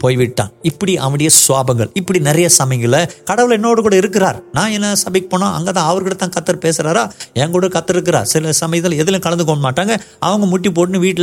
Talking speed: 175 wpm